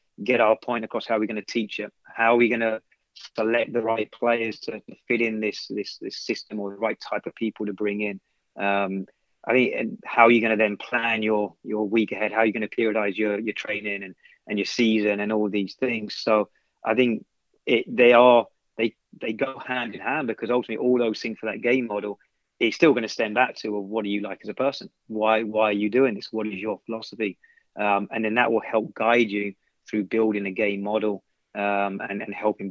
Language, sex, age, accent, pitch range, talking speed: English, male, 30-49, British, 105-115 Hz, 240 wpm